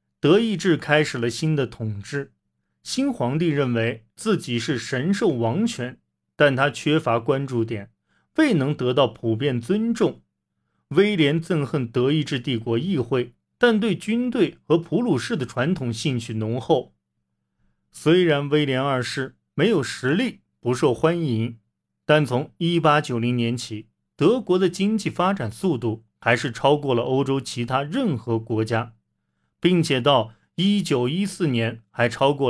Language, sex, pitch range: Chinese, male, 115-170 Hz